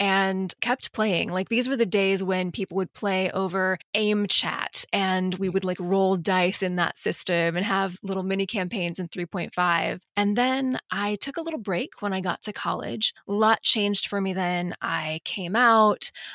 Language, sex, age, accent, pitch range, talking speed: English, female, 20-39, American, 180-210 Hz, 190 wpm